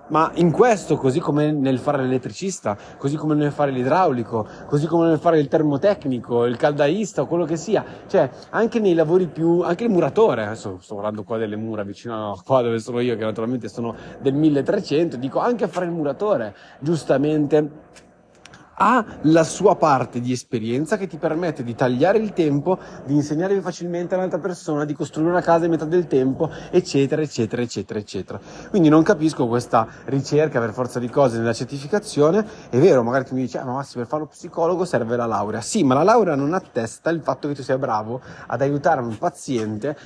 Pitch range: 120-170 Hz